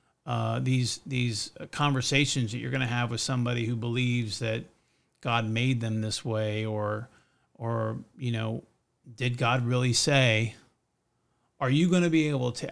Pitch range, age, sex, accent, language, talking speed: 120-145 Hz, 40-59, male, American, English, 160 wpm